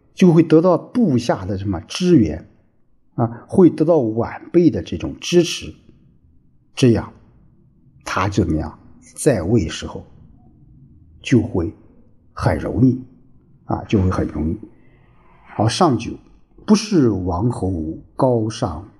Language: Chinese